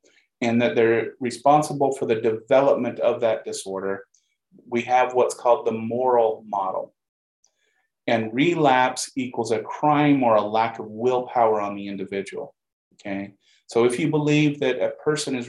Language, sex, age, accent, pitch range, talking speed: English, male, 30-49, American, 110-145 Hz, 150 wpm